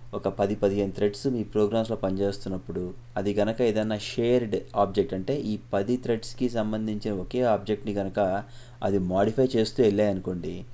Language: English